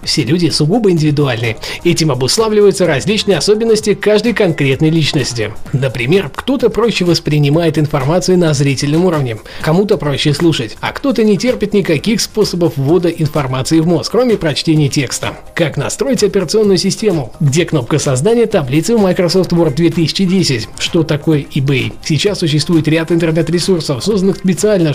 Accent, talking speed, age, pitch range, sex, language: native, 135 wpm, 20-39, 150-190 Hz, male, Russian